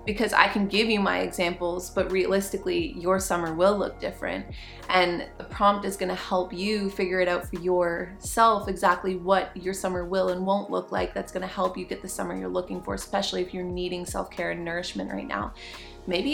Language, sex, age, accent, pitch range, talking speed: English, female, 20-39, American, 175-215 Hz, 200 wpm